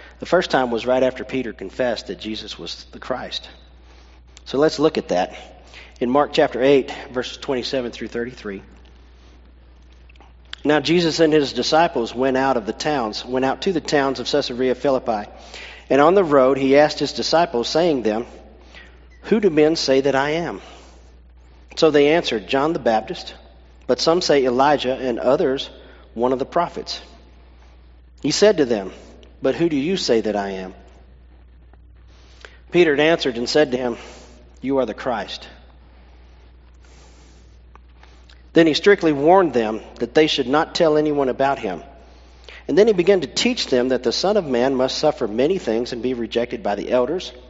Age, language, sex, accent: 40-59, English, male, American